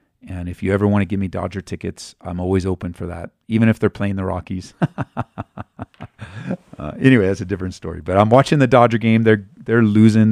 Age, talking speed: 40-59, 210 wpm